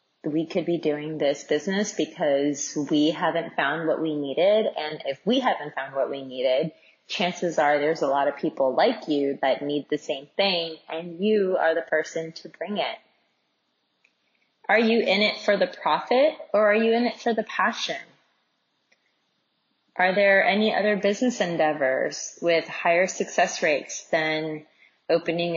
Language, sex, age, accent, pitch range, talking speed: English, female, 20-39, American, 160-205 Hz, 165 wpm